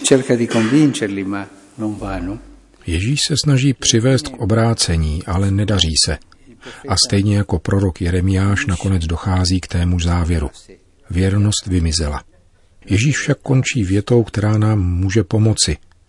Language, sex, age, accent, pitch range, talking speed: Czech, male, 40-59, native, 85-105 Hz, 110 wpm